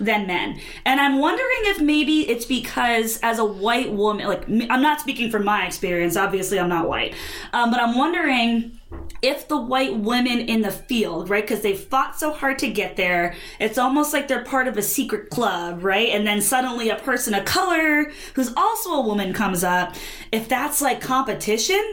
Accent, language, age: American, English, 20-39